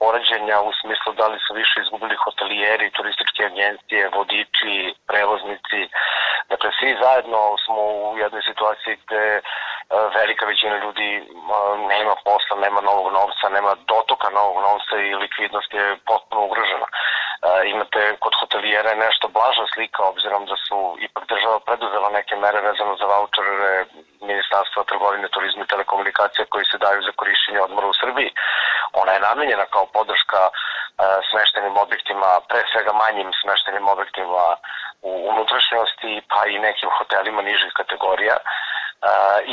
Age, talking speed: 30-49, 135 wpm